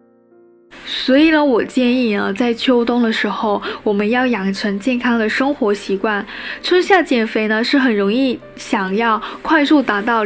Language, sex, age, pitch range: Chinese, female, 10-29, 215-265 Hz